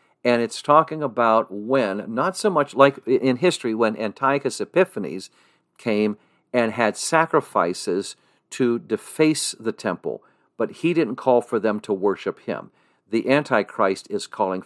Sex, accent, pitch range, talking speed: male, American, 105-140 Hz, 145 wpm